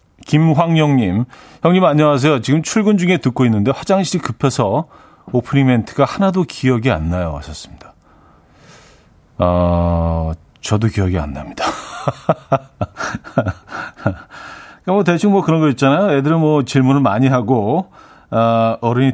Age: 40-59